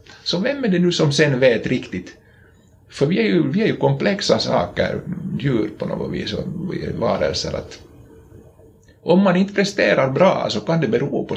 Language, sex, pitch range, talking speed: Swedish, male, 105-140 Hz, 185 wpm